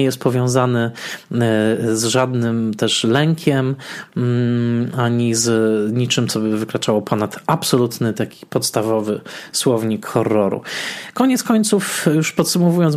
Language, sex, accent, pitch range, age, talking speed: Polish, male, native, 115-140 Hz, 20-39, 105 wpm